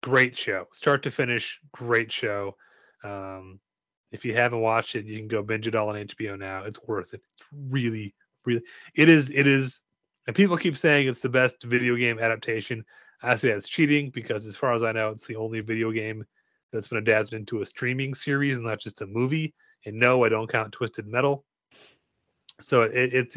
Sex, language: male, English